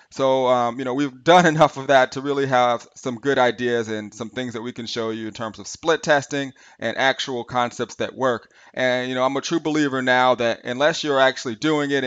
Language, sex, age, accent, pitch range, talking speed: English, male, 30-49, American, 120-145 Hz, 235 wpm